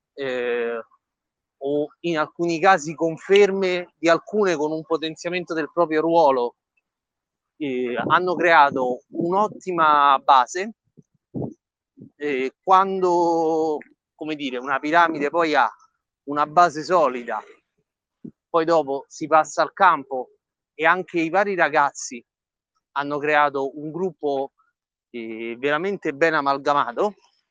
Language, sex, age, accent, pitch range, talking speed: Italian, male, 30-49, native, 145-180 Hz, 105 wpm